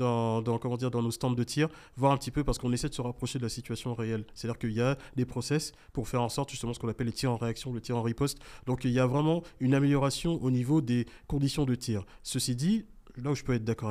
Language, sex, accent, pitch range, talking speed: French, male, French, 120-155 Hz, 285 wpm